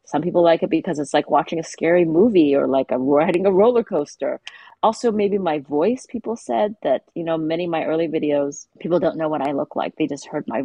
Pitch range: 145-205 Hz